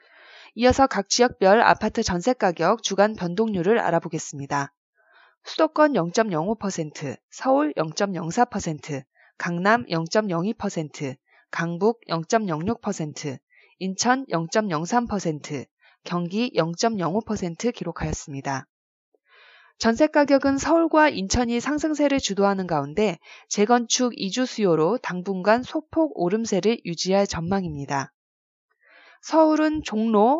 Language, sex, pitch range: Korean, female, 170-245 Hz